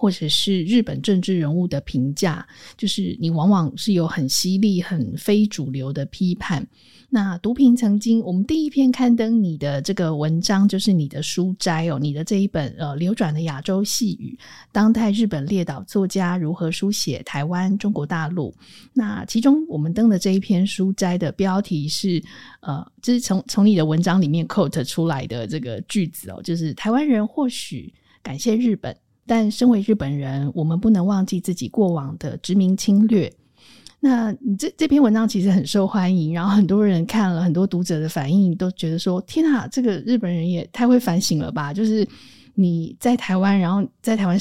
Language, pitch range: Chinese, 165-215 Hz